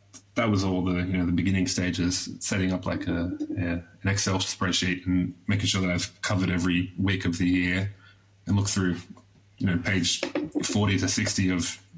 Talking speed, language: 190 wpm, English